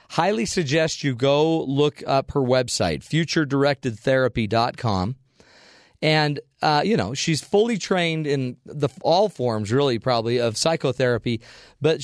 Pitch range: 125-160 Hz